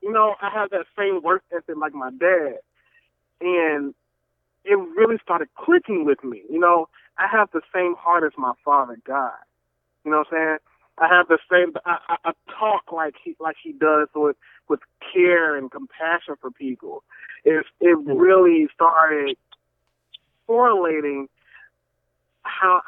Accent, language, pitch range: American, English, 140-185 Hz